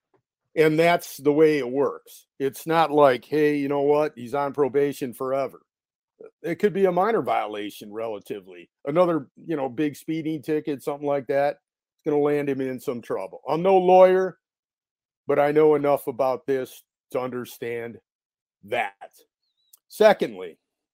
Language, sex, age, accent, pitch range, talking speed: English, male, 50-69, American, 130-165 Hz, 155 wpm